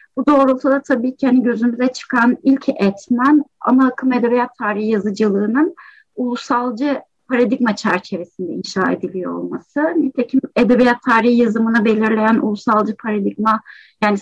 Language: Turkish